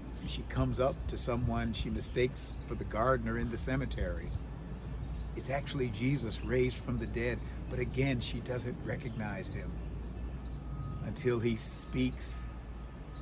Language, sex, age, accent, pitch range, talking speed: English, male, 50-69, American, 70-110 Hz, 135 wpm